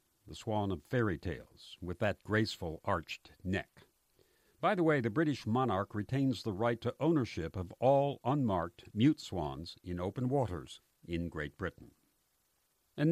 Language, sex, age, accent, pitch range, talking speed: English, male, 60-79, American, 90-130 Hz, 150 wpm